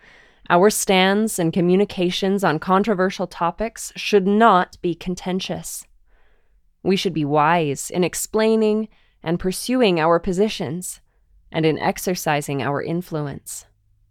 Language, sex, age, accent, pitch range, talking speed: English, female, 20-39, American, 155-205 Hz, 110 wpm